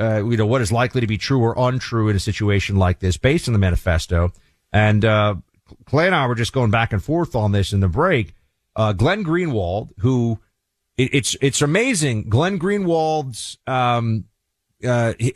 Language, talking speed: English, 190 wpm